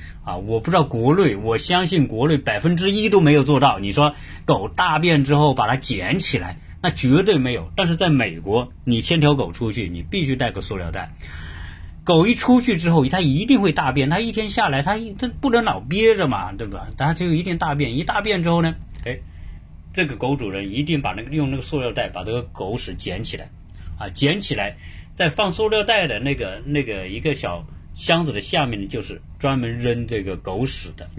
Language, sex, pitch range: Chinese, male, 90-150 Hz